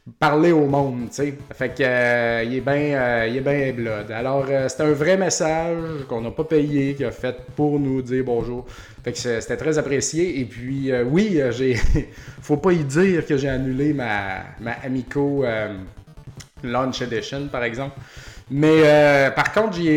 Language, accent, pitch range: French, Canadian, 120-145 Hz